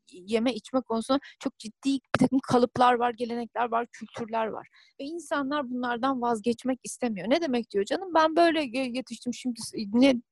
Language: Turkish